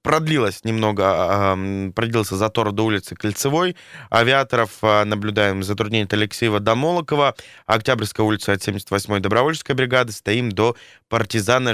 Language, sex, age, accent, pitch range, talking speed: Russian, male, 20-39, native, 105-130 Hz, 120 wpm